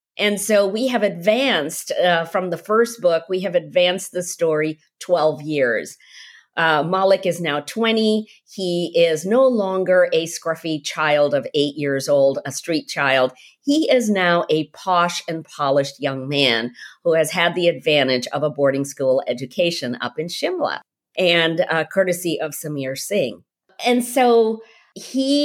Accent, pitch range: American, 150-210 Hz